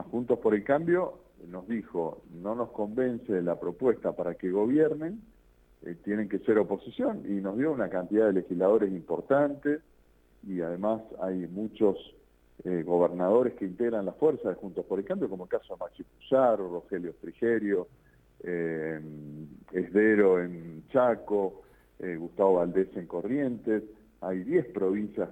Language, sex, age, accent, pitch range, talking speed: Spanish, male, 50-69, Argentinian, 85-115 Hz, 150 wpm